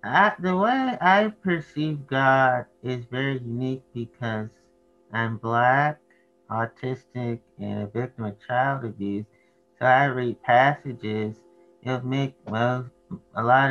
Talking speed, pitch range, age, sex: 115 wpm, 110-150 Hz, 30-49, male